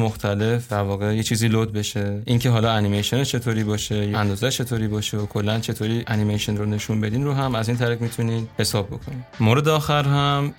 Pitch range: 105-125 Hz